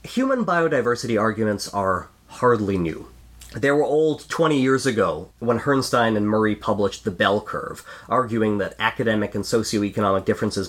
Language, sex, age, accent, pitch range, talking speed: English, male, 30-49, American, 100-135 Hz, 145 wpm